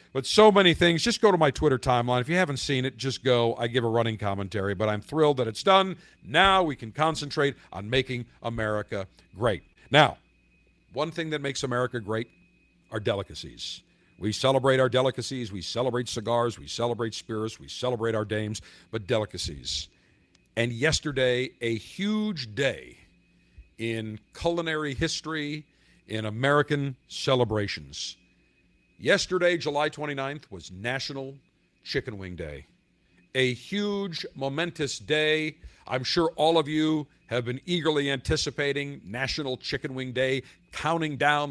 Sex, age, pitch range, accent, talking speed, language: male, 50-69, 110-150 Hz, American, 145 wpm, English